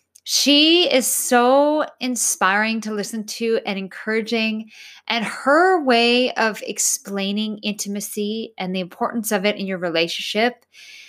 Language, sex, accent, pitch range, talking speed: English, female, American, 195-245 Hz, 125 wpm